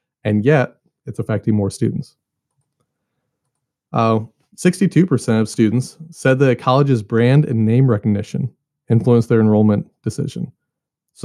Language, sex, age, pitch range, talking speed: English, male, 30-49, 115-140 Hz, 125 wpm